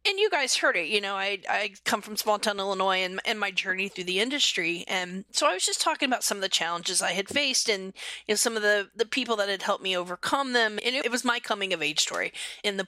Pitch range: 180-225 Hz